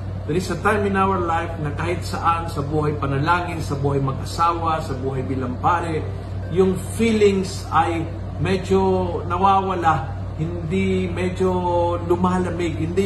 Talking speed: 135 wpm